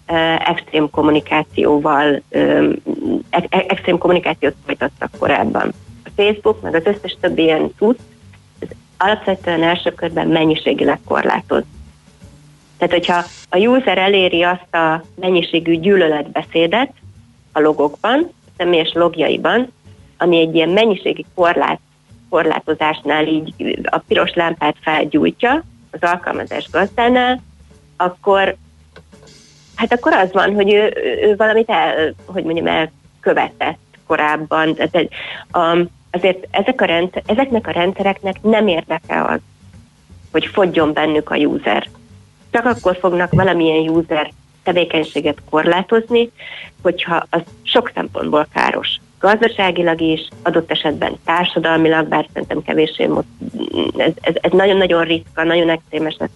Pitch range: 155-190 Hz